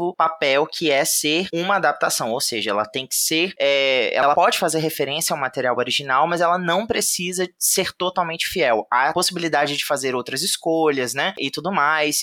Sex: male